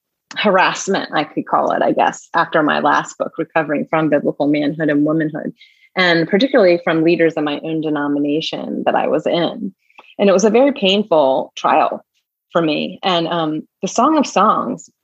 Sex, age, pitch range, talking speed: female, 30-49, 160-210 Hz, 175 wpm